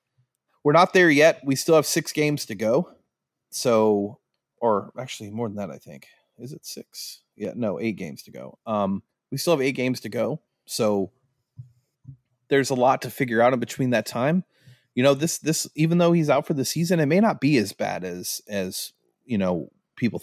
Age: 30-49